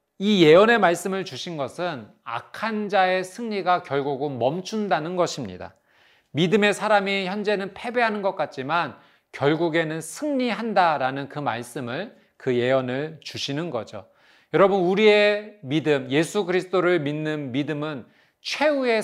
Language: Korean